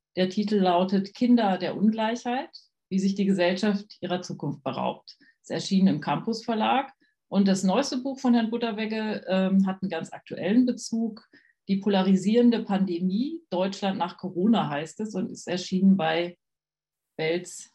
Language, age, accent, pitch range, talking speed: German, 40-59, German, 180-230 Hz, 150 wpm